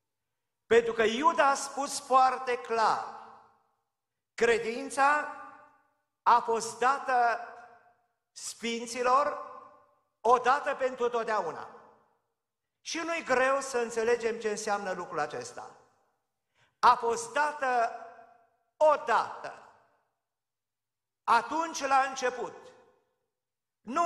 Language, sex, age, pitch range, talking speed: Romanian, male, 50-69, 225-280 Hz, 80 wpm